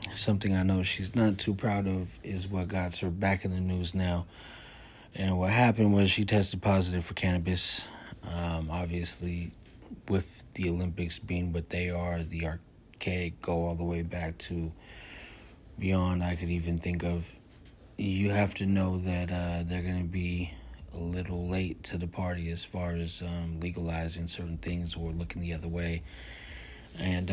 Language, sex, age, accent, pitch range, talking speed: English, male, 30-49, American, 85-95 Hz, 170 wpm